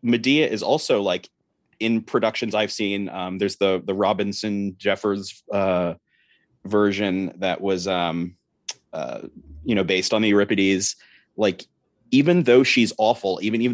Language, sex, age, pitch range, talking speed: English, male, 30-49, 95-115 Hz, 140 wpm